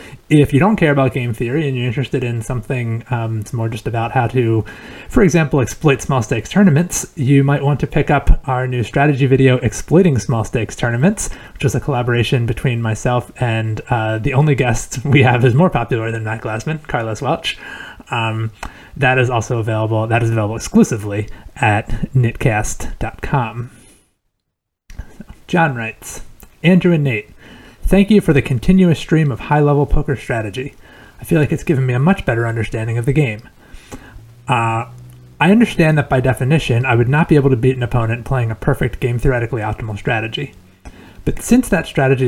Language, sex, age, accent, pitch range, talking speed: English, male, 30-49, American, 115-145 Hz, 175 wpm